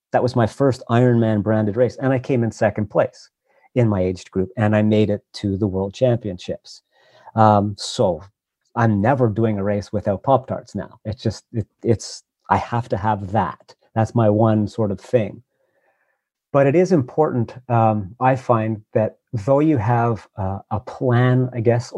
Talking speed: 180 wpm